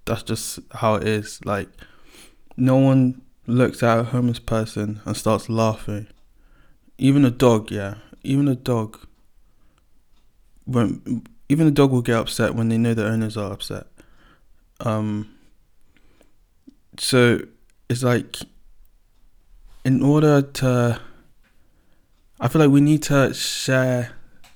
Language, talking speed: English, 125 wpm